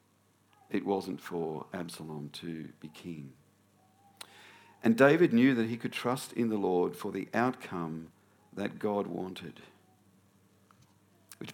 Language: English